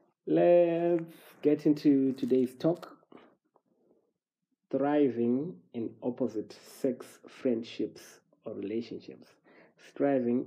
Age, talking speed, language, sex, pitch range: 20-39, 75 wpm, English, male, 110-135 Hz